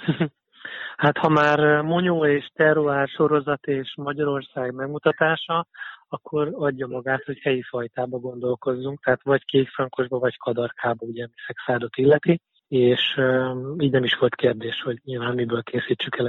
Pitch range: 125-150 Hz